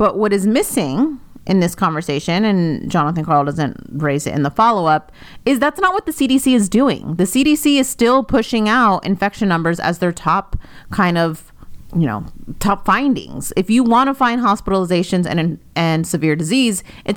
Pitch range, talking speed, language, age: 175-240 Hz, 180 wpm, English, 30-49